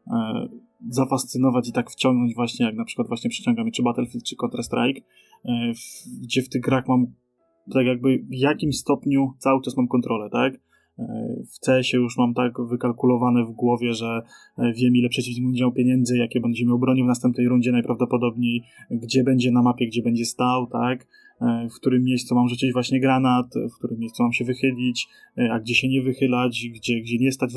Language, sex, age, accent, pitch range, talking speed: Polish, male, 20-39, native, 120-135 Hz, 200 wpm